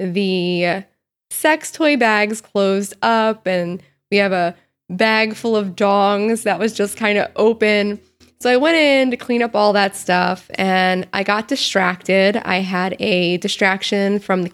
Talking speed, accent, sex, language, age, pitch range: 165 wpm, American, female, English, 20-39, 190-225 Hz